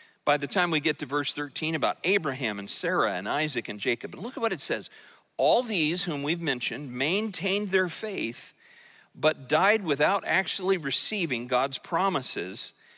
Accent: American